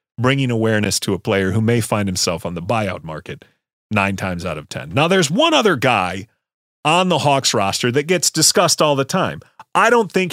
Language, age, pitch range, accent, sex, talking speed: English, 40-59, 115-160 Hz, American, male, 210 wpm